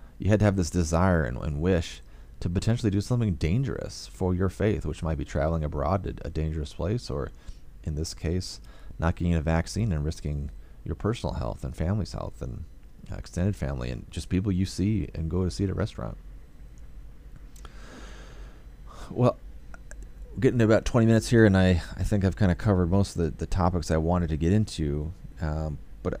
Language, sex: English, male